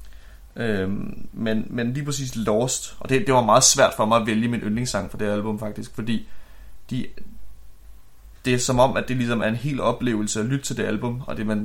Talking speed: 220 wpm